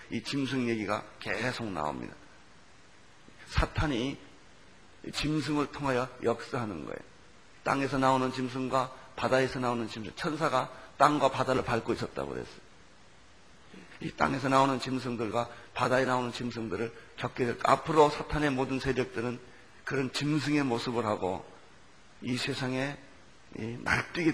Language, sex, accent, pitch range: Korean, male, native, 125-150 Hz